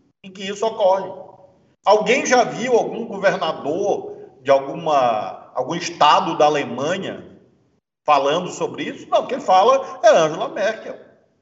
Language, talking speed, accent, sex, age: Portuguese, 125 wpm, Brazilian, male, 40-59